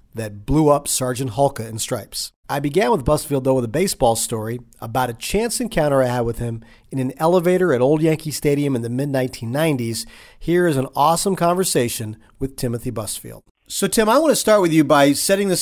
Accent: American